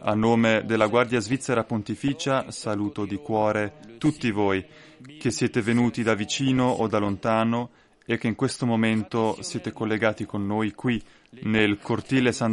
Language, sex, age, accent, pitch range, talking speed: Italian, male, 20-39, native, 105-130 Hz, 155 wpm